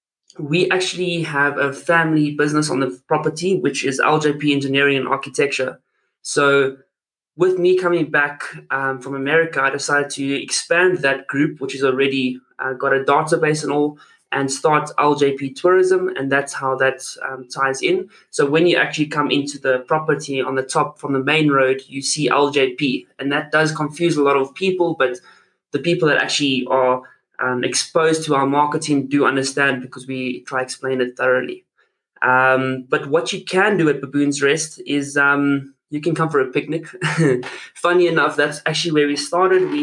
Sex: male